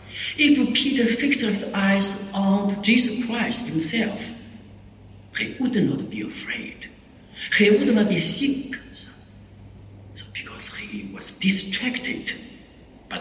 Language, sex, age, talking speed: English, male, 60-79, 120 wpm